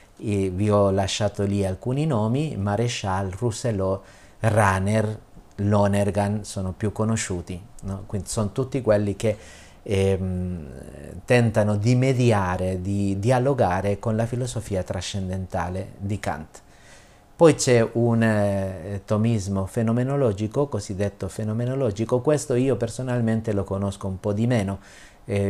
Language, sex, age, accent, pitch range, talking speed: Italian, male, 40-59, native, 95-110 Hz, 120 wpm